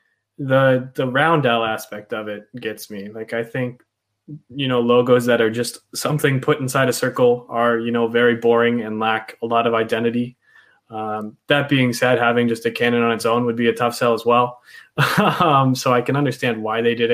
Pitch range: 115-130 Hz